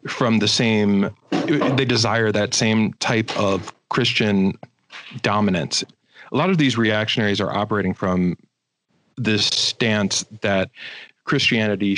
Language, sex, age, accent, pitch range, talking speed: English, male, 40-59, American, 95-115 Hz, 115 wpm